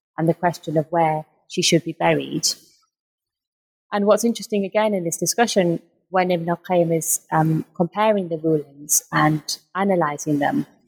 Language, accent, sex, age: English, British, female, 30-49